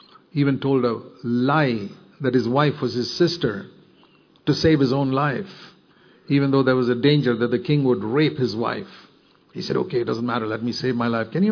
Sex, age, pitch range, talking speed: male, 50-69, 125-160 Hz, 215 wpm